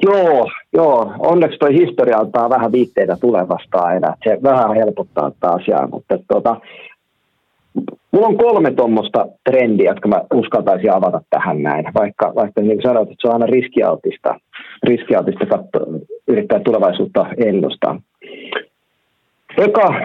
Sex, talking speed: male, 125 wpm